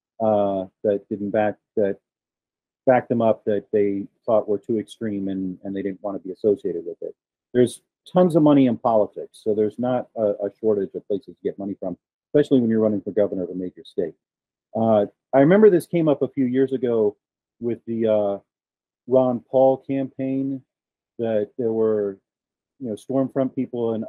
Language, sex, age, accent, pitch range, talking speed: English, male, 40-59, American, 105-135 Hz, 190 wpm